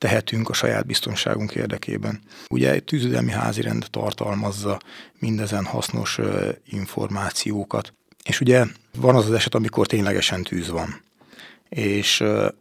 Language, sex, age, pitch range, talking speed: Hungarian, male, 30-49, 100-125 Hz, 120 wpm